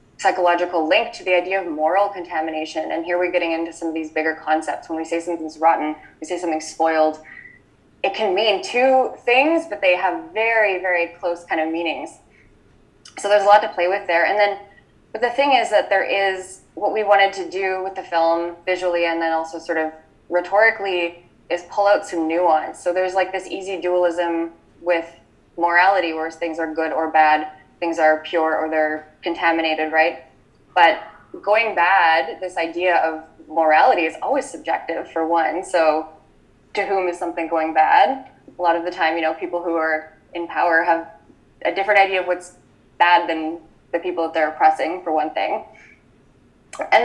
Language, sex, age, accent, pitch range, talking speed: English, female, 20-39, American, 160-190 Hz, 185 wpm